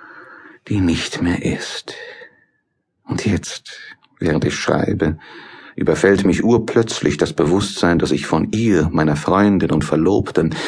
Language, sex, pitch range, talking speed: German, male, 95-150 Hz, 125 wpm